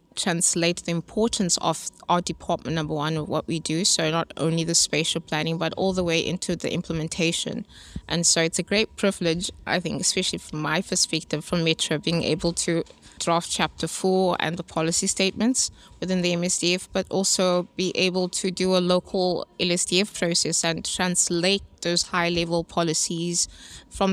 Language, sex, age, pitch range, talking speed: English, female, 20-39, 165-185 Hz, 170 wpm